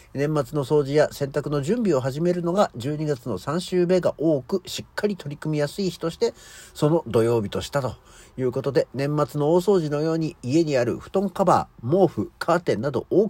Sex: male